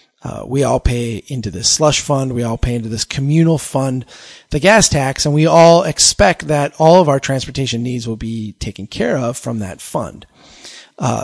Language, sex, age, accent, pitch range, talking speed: English, male, 40-59, American, 120-150 Hz, 200 wpm